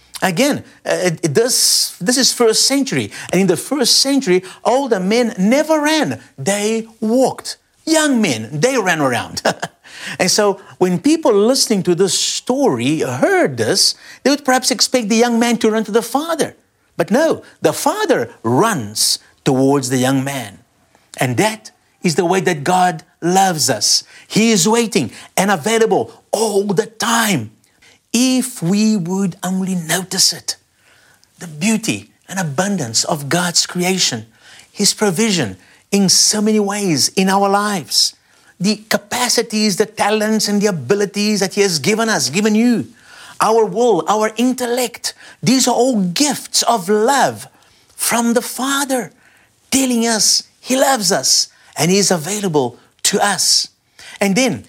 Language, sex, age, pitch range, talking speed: English, male, 50-69, 180-235 Hz, 145 wpm